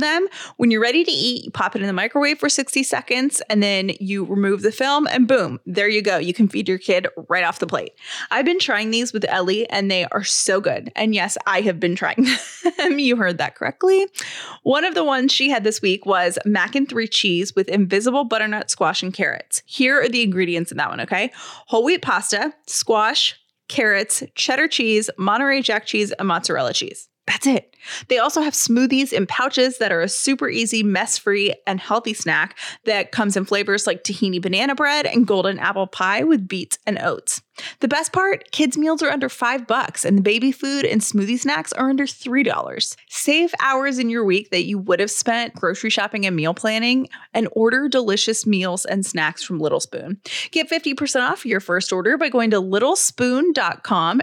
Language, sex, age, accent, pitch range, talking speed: English, female, 20-39, American, 200-275 Hz, 200 wpm